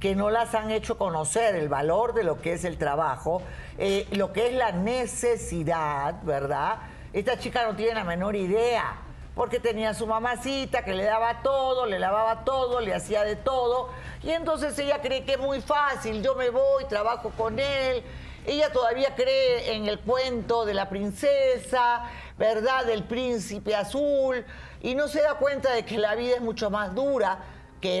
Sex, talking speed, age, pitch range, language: female, 180 wpm, 50-69, 205-270 Hz, Spanish